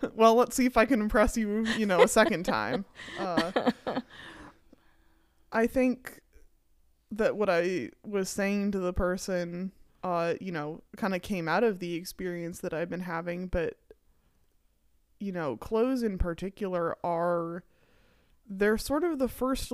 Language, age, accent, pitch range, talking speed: English, 20-39, American, 175-220 Hz, 150 wpm